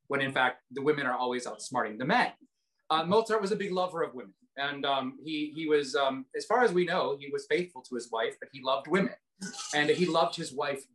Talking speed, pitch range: 240 wpm, 145-220 Hz